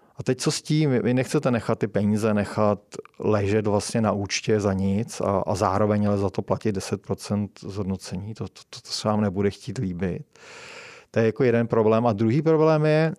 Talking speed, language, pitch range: 195 wpm, Czech, 105-125 Hz